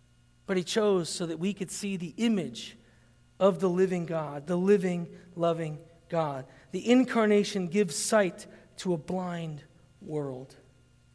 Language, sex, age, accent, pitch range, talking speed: English, male, 40-59, American, 180-245 Hz, 140 wpm